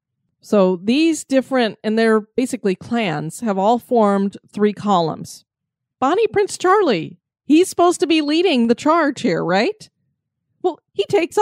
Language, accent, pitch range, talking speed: English, American, 210-290 Hz, 140 wpm